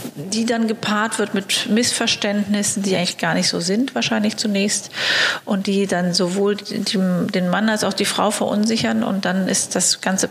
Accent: German